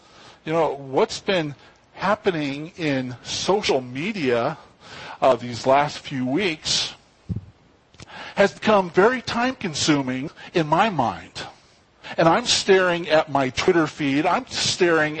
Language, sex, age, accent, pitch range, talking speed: English, male, 50-69, American, 140-205 Hz, 115 wpm